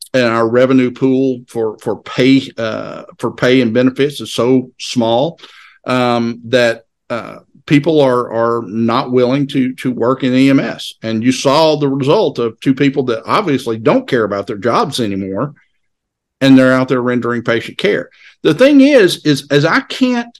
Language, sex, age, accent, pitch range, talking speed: English, male, 50-69, American, 120-140 Hz, 170 wpm